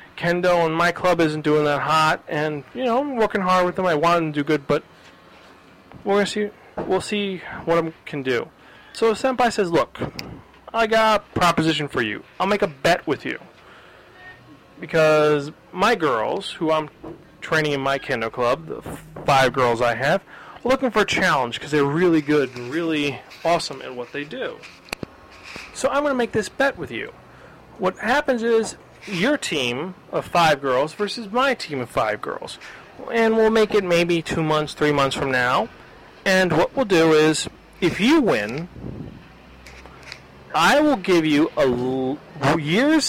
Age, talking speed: 30-49, 175 wpm